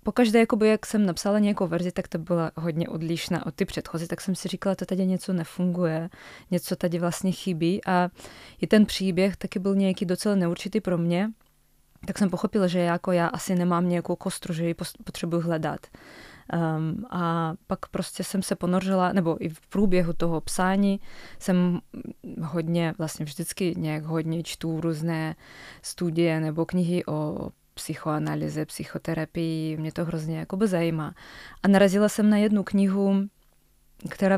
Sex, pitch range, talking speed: female, 165-190 Hz, 160 wpm